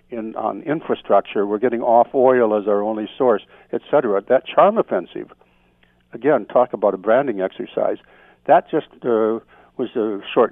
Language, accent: English, American